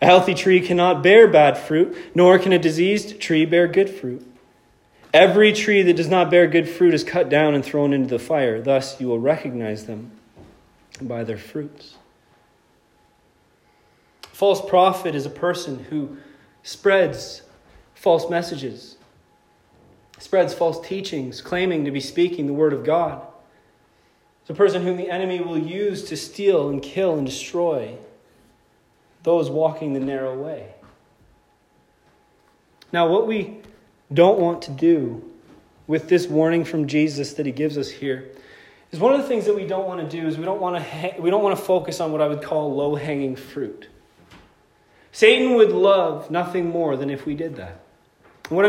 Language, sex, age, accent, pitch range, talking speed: English, male, 30-49, American, 150-200 Hz, 165 wpm